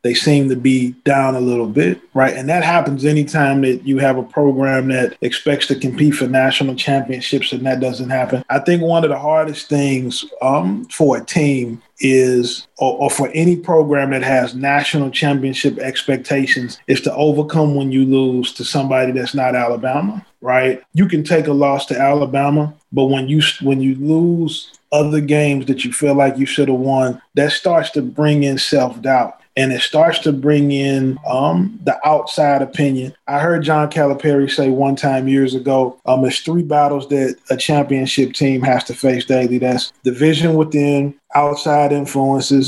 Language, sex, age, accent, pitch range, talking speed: English, male, 20-39, American, 130-150 Hz, 180 wpm